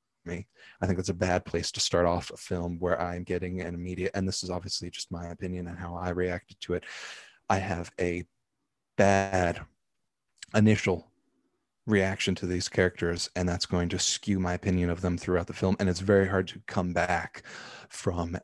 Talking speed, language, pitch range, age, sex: 190 wpm, English, 90-100 Hz, 30-49, male